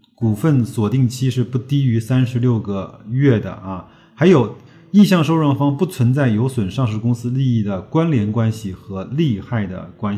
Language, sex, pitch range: Chinese, male, 105-140 Hz